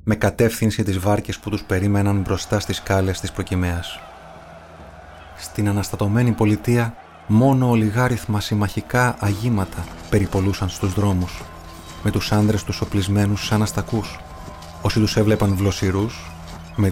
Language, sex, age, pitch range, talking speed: Greek, male, 30-49, 95-110 Hz, 120 wpm